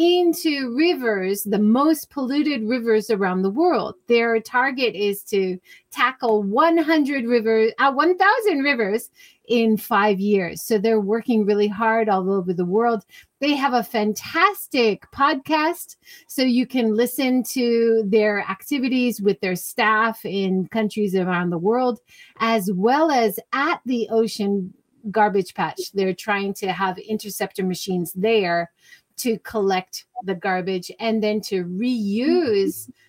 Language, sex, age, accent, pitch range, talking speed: English, female, 30-49, American, 205-275 Hz, 135 wpm